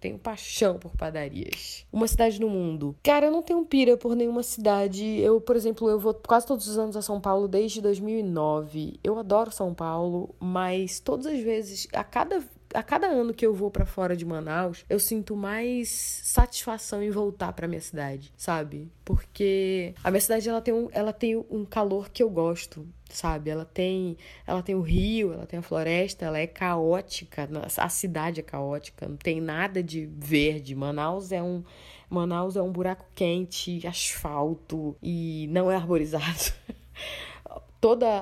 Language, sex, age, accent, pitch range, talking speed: Portuguese, female, 20-39, Brazilian, 170-215 Hz, 165 wpm